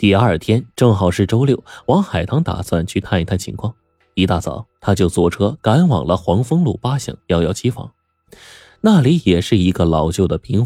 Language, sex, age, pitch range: Chinese, male, 20-39, 90-120 Hz